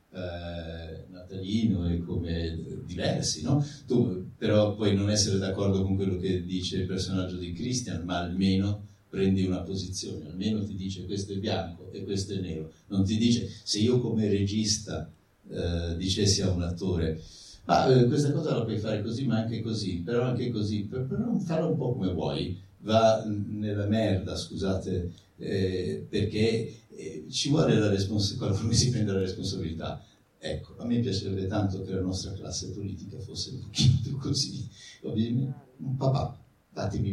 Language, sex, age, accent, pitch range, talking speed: Italian, male, 50-69, native, 95-110 Hz, 165 wpm